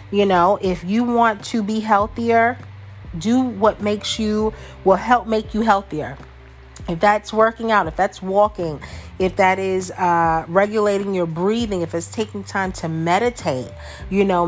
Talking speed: 160 wpm